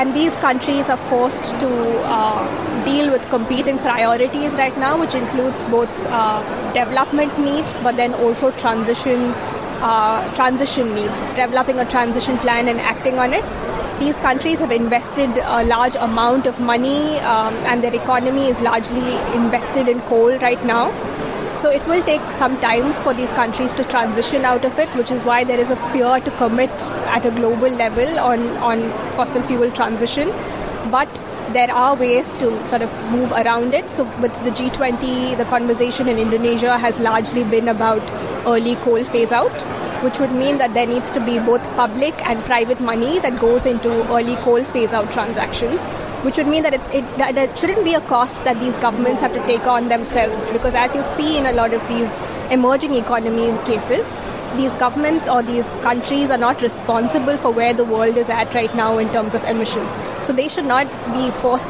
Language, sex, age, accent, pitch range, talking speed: English, female, 20-39, Indian, 235-260 Hz, 185 wpm